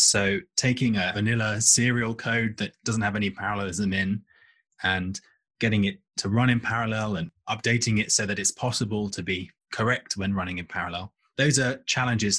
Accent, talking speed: British, 175 wpm